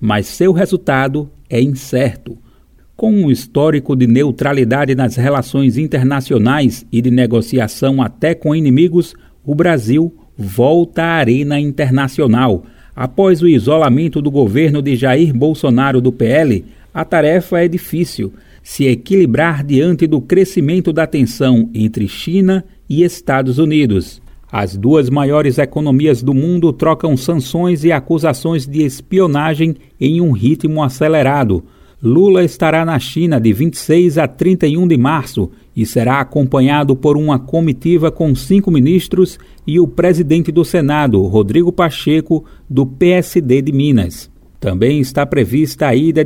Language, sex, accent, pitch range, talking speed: Portuguese, male, Brazilian, 130-165 Hz, 130 wpm